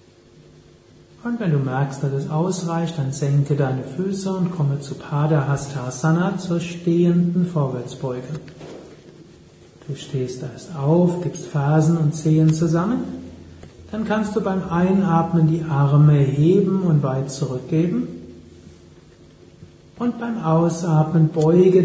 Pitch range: 140-175 Hz